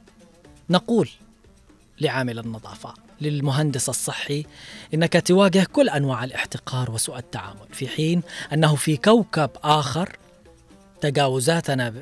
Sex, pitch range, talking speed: female, 135-180 Hz, 95 wpm